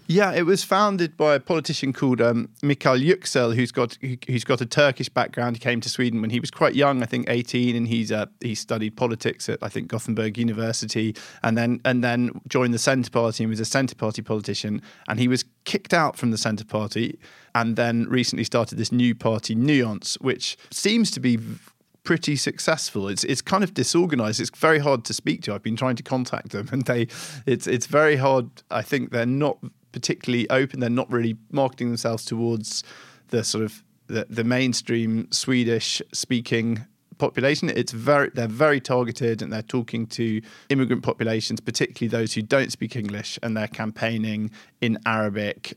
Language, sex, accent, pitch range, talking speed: English, male, British, 115-130 Hz, 190 wpm